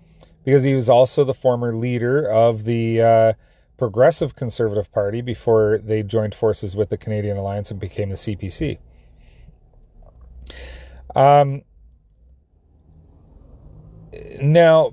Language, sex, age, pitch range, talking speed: English, male, 30-49, 105-135 Hz, 110 wpm